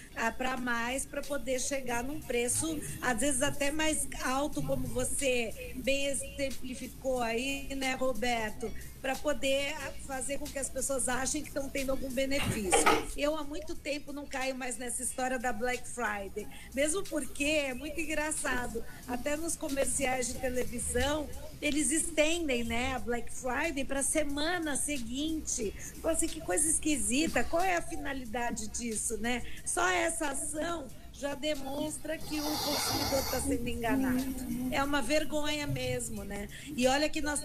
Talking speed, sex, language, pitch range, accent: 155 wpm, female, Portuguese, 240-285 Hz, Brazilian